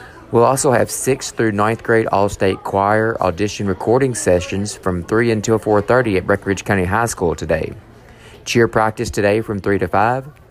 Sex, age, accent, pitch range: male, 30-49, American, 90-115 Hz